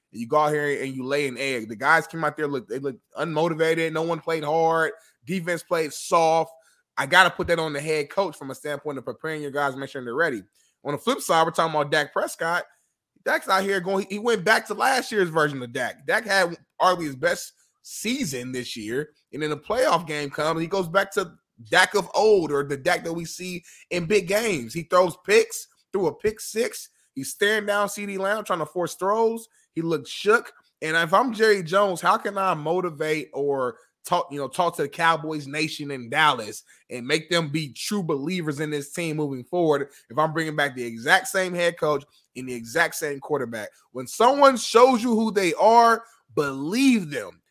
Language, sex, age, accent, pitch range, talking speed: English, male, 20-39, American, 150-200 Hz, 210 wpm